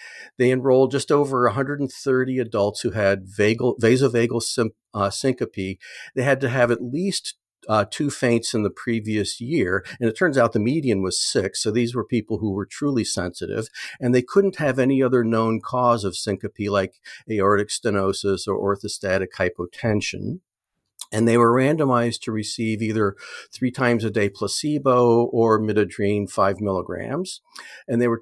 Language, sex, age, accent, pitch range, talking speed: English, male, 50-69, American, 100-130 Hz, 165 wpm